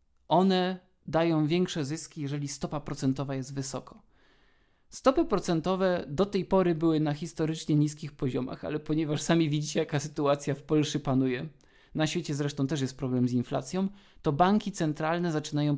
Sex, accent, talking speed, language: male, native, 150 wpm, Polish